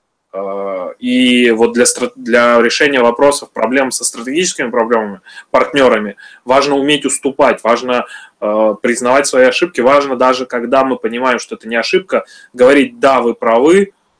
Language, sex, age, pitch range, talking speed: Russian, male, 20-39, 115-160 Hz, 135 wpm